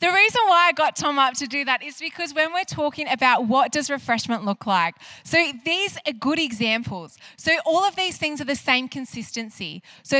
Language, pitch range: English, 235-295 Hz